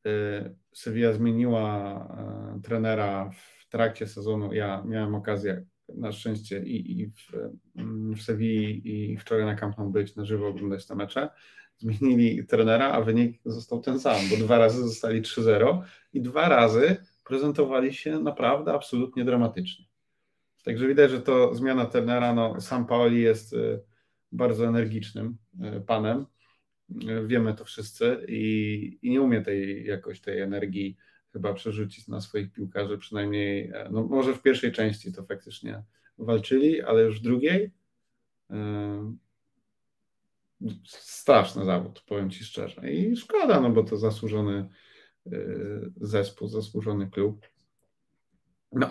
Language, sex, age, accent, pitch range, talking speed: Polish, male, 30-49, native, 105-125 Hz, 125 wpm